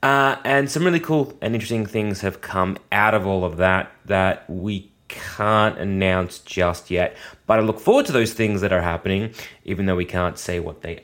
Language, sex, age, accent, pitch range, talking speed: English, male, 20-39, Australian, 110-180 Hz, 205 wpm